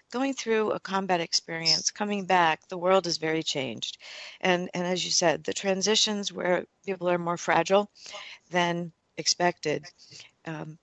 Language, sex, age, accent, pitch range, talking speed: English, female, 50-69, American, 165-205 Hz, 150 wpm